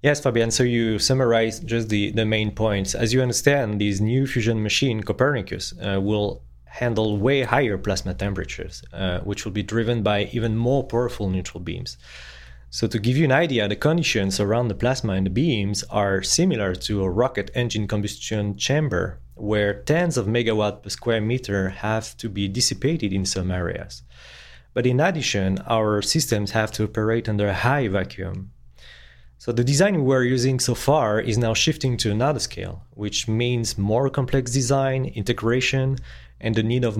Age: 30-49